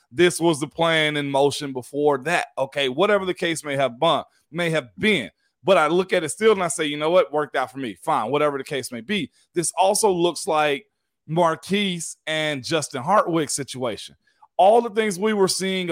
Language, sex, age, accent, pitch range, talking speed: English, male, 30-49, American, 145-190 Hz, 205 wpm